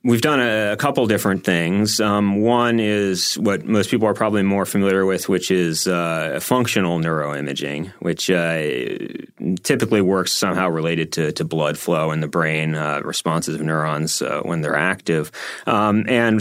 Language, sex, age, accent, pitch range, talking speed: English, male, 30-49, American, 85-110 Hz, 170 wpm